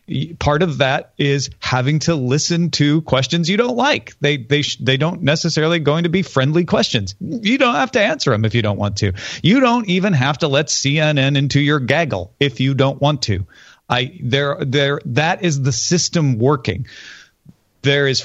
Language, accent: English, American